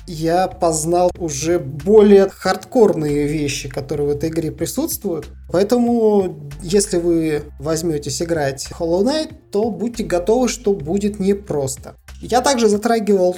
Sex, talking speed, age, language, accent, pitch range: male, 125 wpm, 20-39, Russian, native, 150-185 Hz